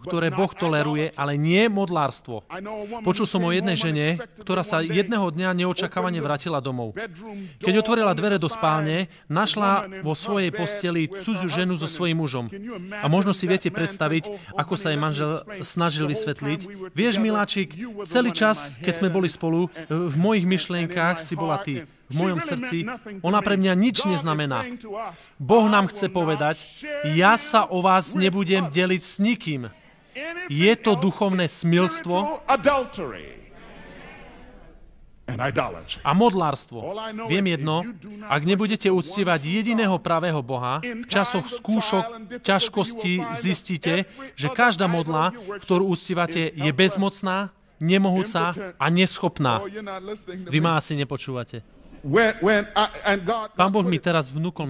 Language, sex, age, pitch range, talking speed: Slovak, male, 30-49, 160-205 Hz, 125 wpm